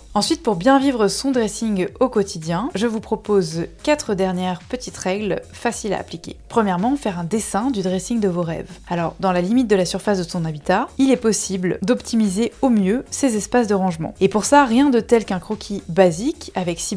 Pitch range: 180-225 Hz